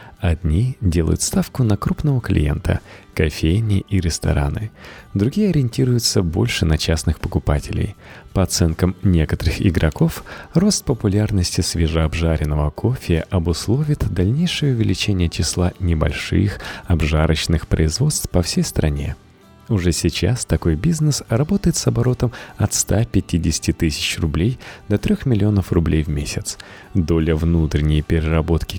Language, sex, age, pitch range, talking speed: Russian, male, 30-49, 80-115 Hz, 110 wpm